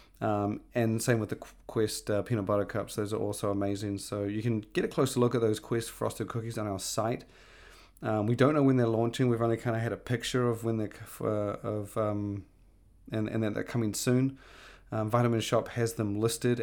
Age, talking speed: 30-49, 215 wpm